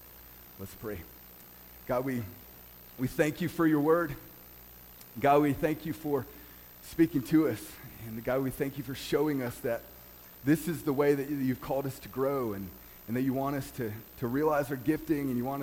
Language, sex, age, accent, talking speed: English, male, 30-49, American, 195 wpm